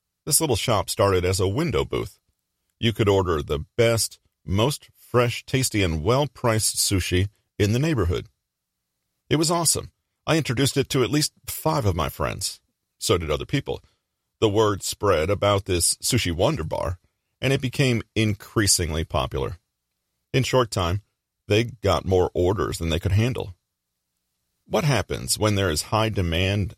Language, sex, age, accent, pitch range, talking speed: English, male, 40-59, American, 85-115 Hz, 155 wpm